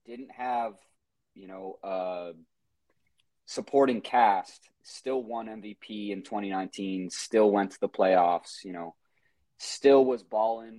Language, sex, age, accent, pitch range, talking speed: English, male, 20-39, American, 95-120 Hz, 120 wpm